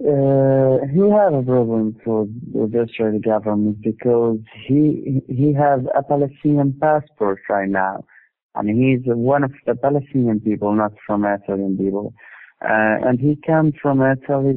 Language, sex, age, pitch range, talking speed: Italian, male, 50-69, 110-140 Hz, 160 wpm